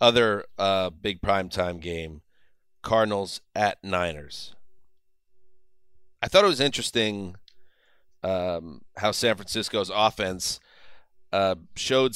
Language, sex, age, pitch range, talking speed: English, male, 30-49, 100-125 Hz, 100 wpm